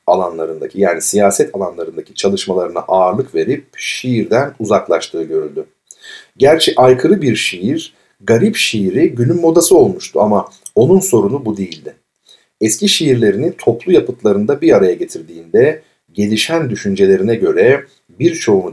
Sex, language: male, Turkish